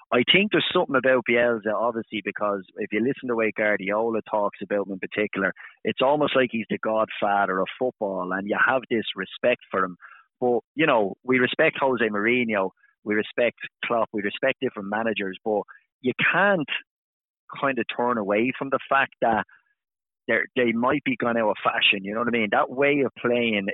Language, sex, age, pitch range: English, male, 30-49, 105-125 Hz